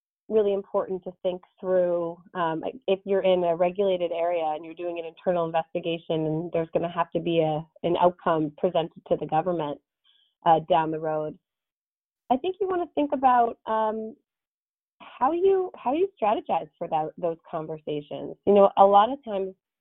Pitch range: 165-210 Hz